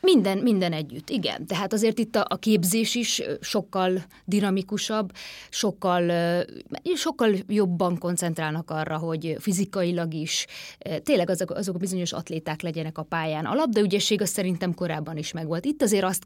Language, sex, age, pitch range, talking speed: Hungarian, female, 20-39, 170-210 Hz, 140 wpm